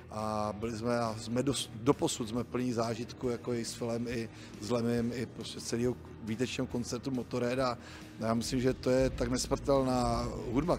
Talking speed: 170 wpm